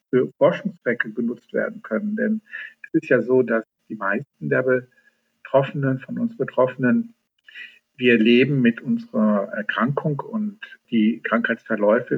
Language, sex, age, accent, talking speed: German, male, 50-69, German, 130 wpm